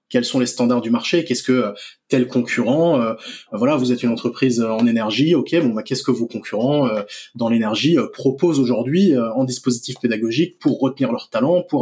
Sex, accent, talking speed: male, French, 205 wpm